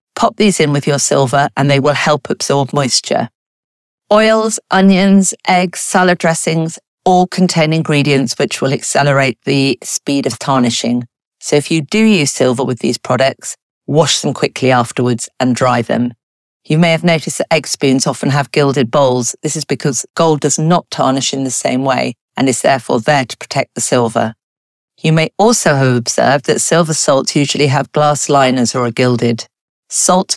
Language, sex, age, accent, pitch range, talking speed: English, female, 50-69, British, 130-165 Hz, 175 wpm